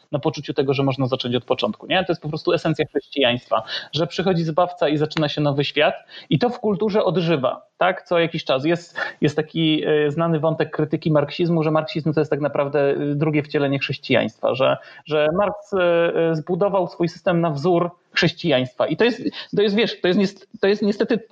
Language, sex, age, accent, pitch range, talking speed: Polish, male, 30-49, native, 150-190 Hz, 195 wpm